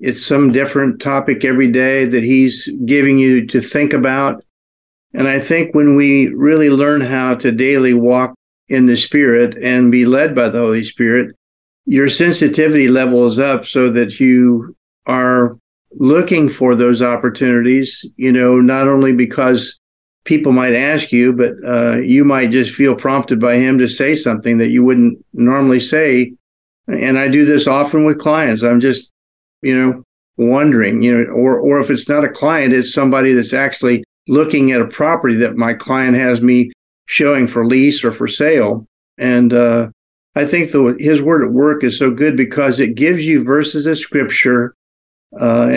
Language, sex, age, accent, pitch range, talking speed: English, male, 50-69, American, 120-140 Hz, 175 wpm